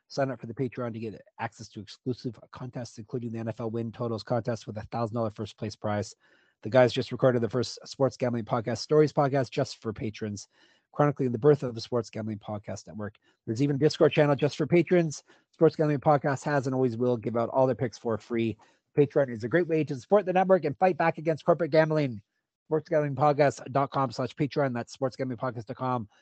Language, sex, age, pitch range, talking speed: English, male, 30-49, 115-145 Hz, 205 wpm